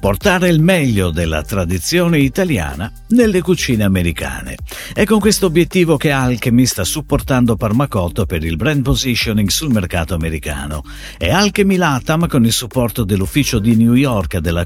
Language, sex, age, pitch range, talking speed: Italian, male, 50-69, 95-155 Hz, 150 wpm